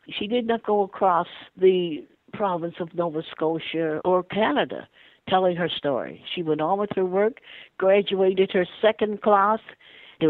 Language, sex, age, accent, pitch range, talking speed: English, female, 60-79, American, 160-205 Hz, 150 wpm